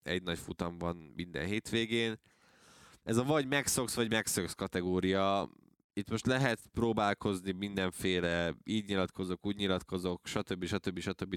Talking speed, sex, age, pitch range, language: 130 wpm, male, 20-39, 90-105 Hz, Hungarian